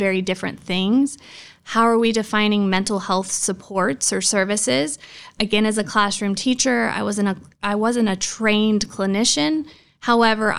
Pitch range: 195-225 Hz